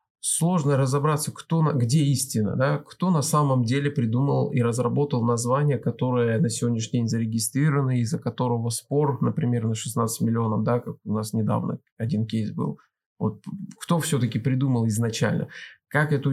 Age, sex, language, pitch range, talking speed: 20-39, male, Russian, 120-145 Hz, 155 wpm